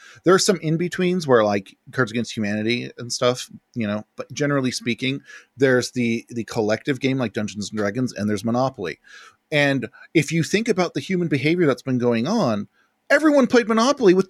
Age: 40-59